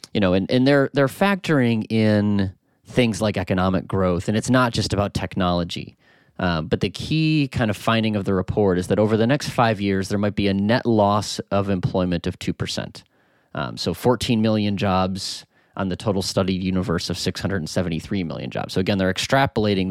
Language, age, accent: English, 30-49, American